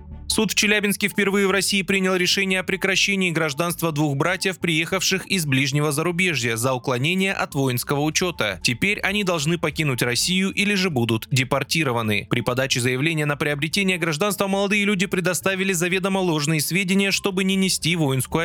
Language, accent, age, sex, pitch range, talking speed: Russian, native, 20-39, male, 130-190 Hz, 155 wpm